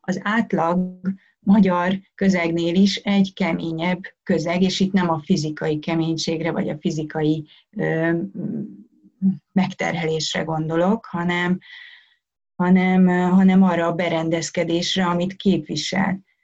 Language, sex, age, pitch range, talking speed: Hungarian, female, 30-49, 165-200 Hz, 100 wpm